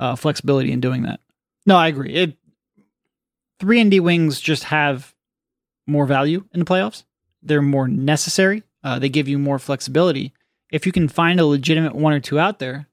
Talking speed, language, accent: 185 wpm, English, American